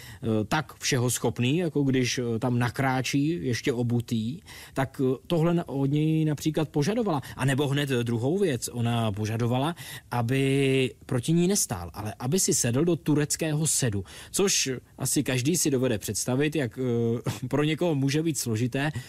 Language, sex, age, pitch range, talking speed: Czech, male, 20-39, 120-155 Hz, 140 wpm